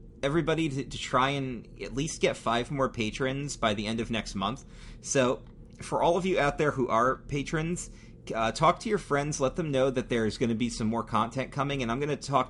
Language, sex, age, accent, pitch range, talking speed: English, male, 30-49, American, 110-145 Hz, 235 wpm